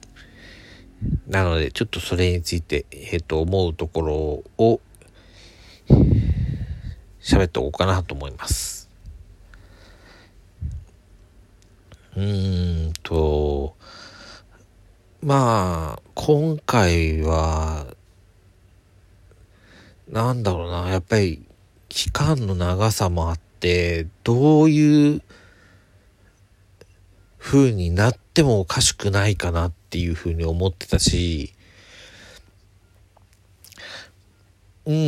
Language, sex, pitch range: Japanese, male, 90-100 Hz